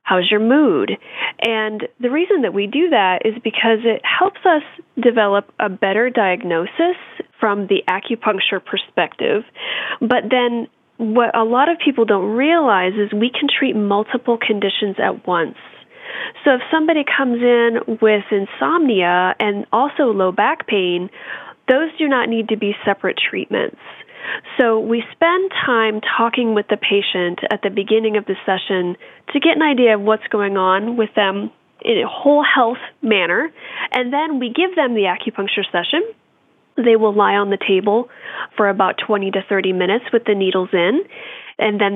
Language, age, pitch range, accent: English, 30-49, 205-260 Hz, American